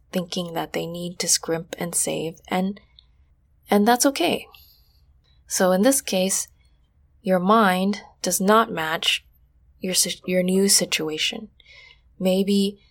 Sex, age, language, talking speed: female, 20-39, English, 120 wpm